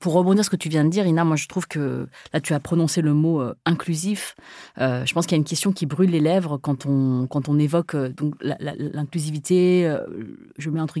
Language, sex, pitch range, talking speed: French, female, 150-190 Hz, 240 wpm